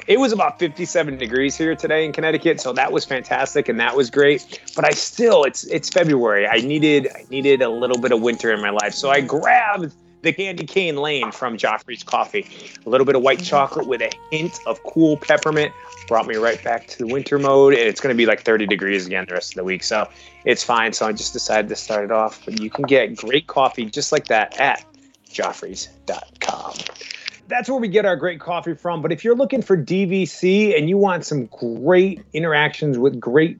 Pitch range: 135-175 Hz